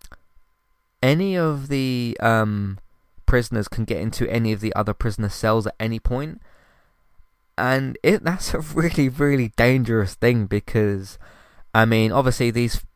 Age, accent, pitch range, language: 20-39, British, 95-115 Hz, English